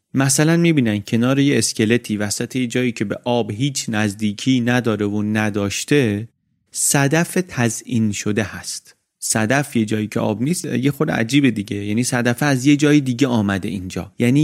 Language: Persian